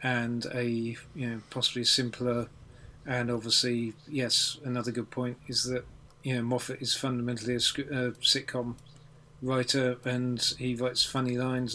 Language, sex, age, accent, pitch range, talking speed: English, male, 40-59, British, 125-140 Hz, 150 wpm